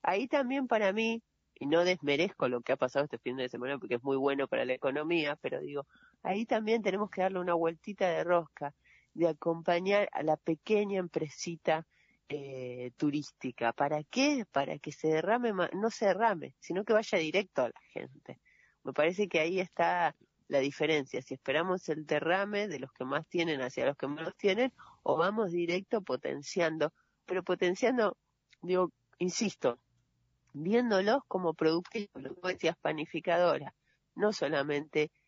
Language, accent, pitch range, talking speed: Spanish, Argentinian, 145-185 Hz, 160 wpm